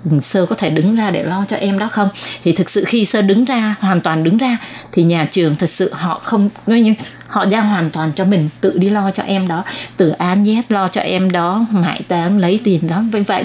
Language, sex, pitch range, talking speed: Vietnamese, female, 175-225 Hz, 255 wpm